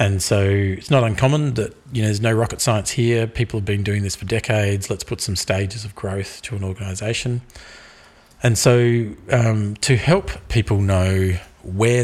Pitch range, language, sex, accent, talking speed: 95-115 Hz, English, male, Australian, 185 wpm